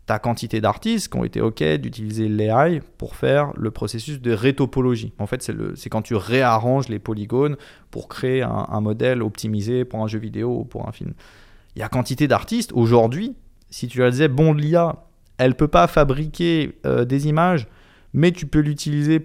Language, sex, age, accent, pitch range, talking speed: French, male, 20-39, French, 110-140 Hz, 195 wpm